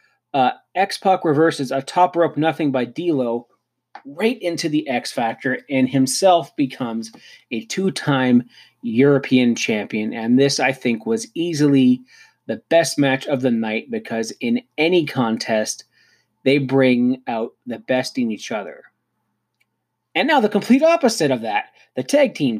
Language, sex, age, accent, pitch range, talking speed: English, male, 30-49, American, 120-160 Hz, 145 wpm